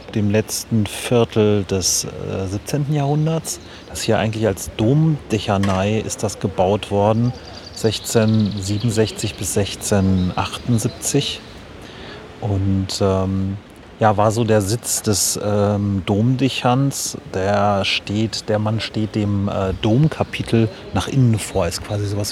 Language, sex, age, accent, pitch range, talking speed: German, male, 30-49, German, 95-115 Hz, 115 wpm